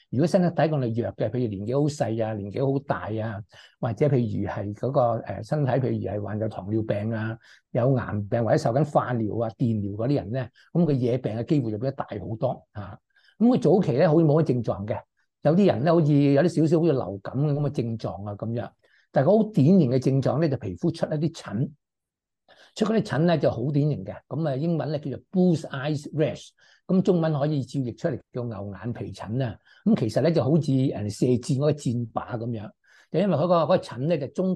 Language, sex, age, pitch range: Chinese, male, 60-79, 115-155 Hz